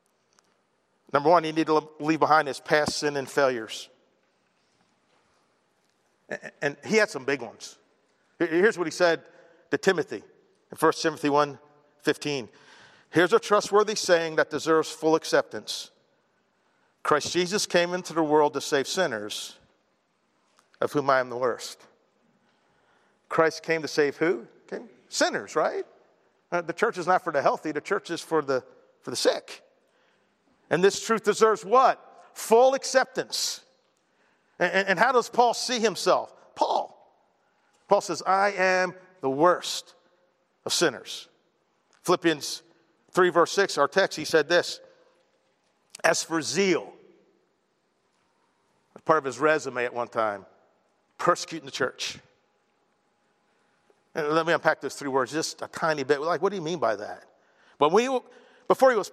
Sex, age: male, 50-69